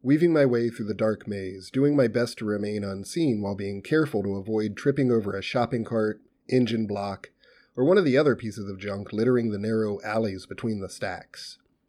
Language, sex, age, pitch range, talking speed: English, male, 30-49, 100-125 Hz, 200 wpm